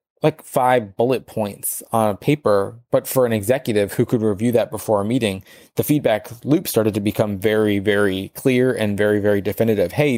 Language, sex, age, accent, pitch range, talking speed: English, male, 20-39, American, 105-125 Hz, 190 wpm